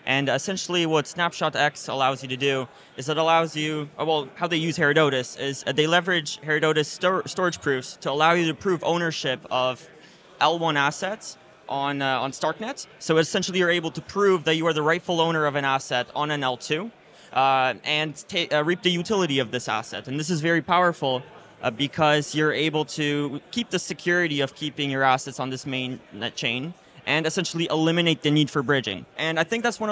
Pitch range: 140-170 Hz